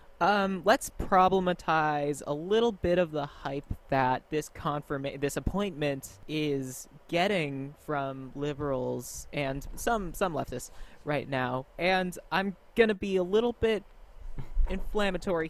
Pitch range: 145-195 Hz